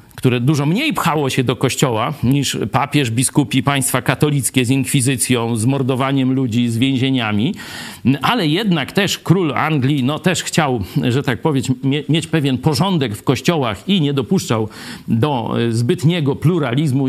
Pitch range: 125-155 Hz